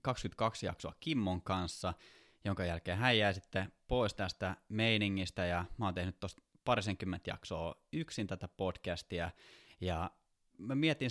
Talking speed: 135 wpm